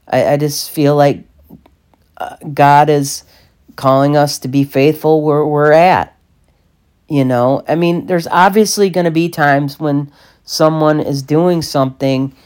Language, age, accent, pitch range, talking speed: English, 40-59, American, 125-150 Hz, 140 wpm